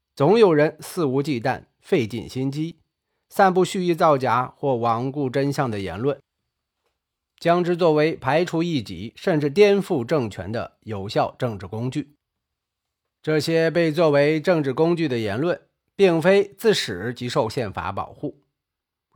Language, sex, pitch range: Chinese, male, 130-180 Hz